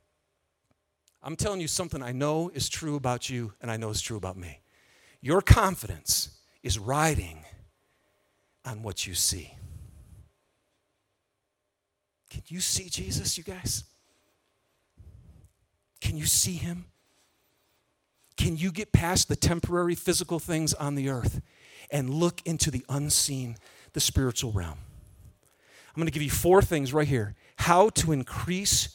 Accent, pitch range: American, 105-160 Hz